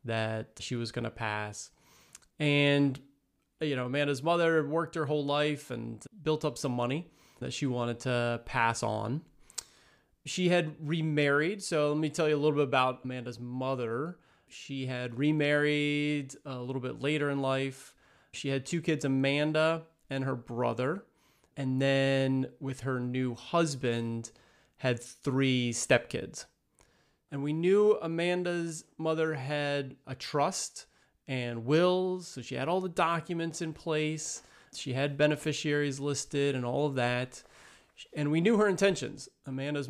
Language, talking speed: English, 145 wpm